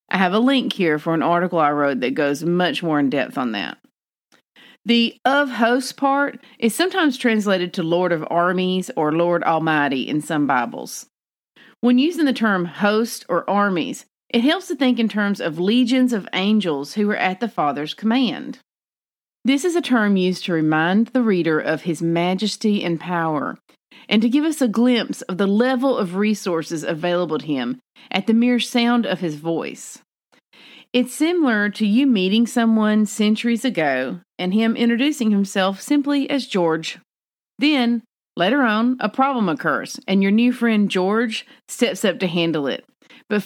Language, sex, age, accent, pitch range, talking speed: English, female, 40-59, American, 175-245 Hz, 175 wpm